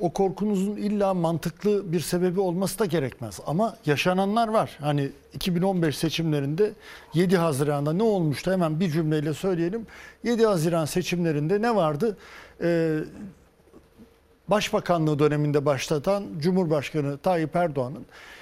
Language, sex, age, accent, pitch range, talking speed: Turkish, male, 60-79, native, 160-210 Hz, 115 wpm